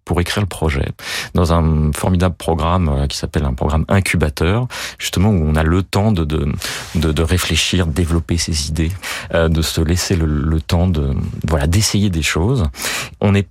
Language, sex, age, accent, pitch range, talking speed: French, male, 30-49, French, 80-100 Hz, 175 wpm